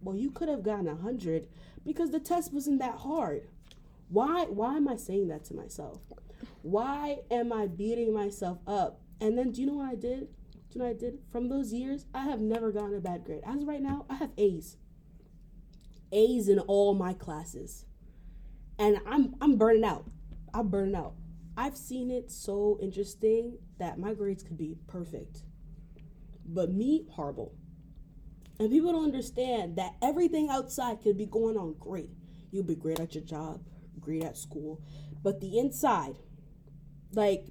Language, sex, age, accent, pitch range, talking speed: English, female, 20-39, American, 170-245 Hz, 175 wpm